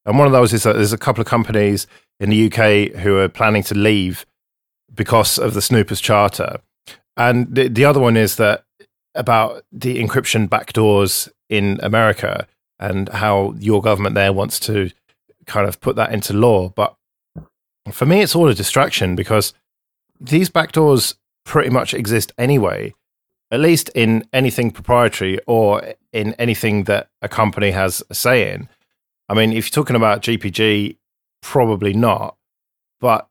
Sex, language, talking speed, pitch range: male, English, 160 wpm, 100-115 Hz